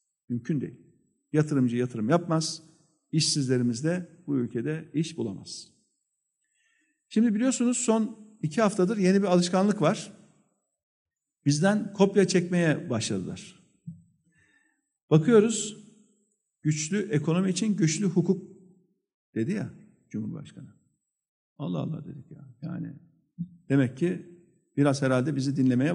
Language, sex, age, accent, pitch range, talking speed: Turkish, male, 50-69, native, 145-195 Hz, 100 wpm